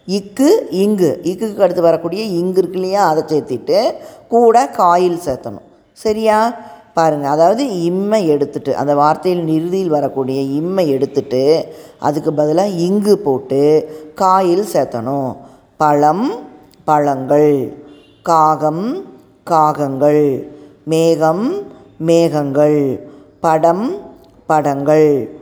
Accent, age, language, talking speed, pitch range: native, 20-39, Tamil, 90 wpm, 150-195 Hz